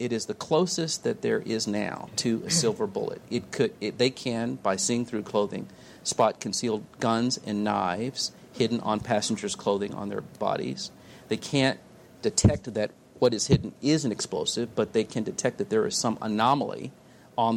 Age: 40-59